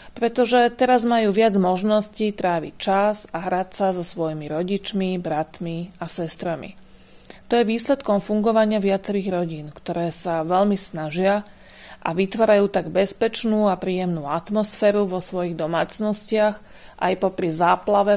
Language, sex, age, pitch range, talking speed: Slovak, female, 40-59, 175-215 Hz, 130 wpm